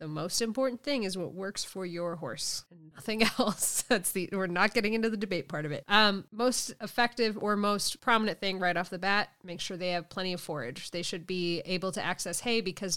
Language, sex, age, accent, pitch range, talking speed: English, female, 20-39, American, 170-235 Hz, 230 wpm